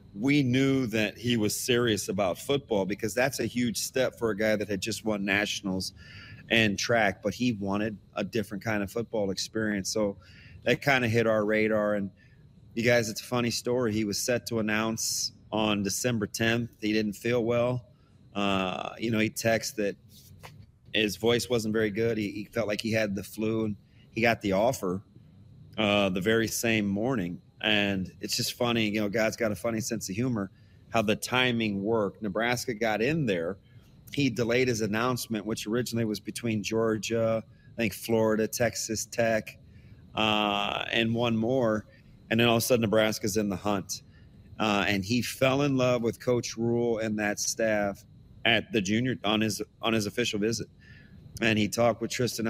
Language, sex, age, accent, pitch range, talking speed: English, male, 30-49, American, 105-120 Hz, 185 wpm